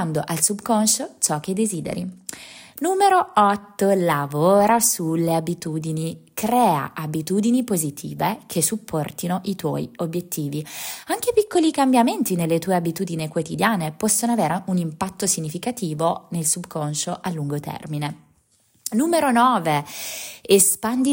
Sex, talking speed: female, 110 wpm